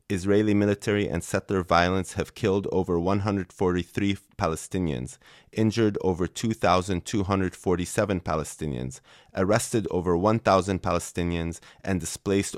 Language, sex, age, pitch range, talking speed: English, male, 30-49, 85-100 Hz, 95 wpm